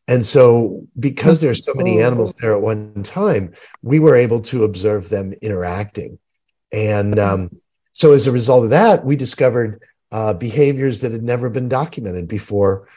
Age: 50-69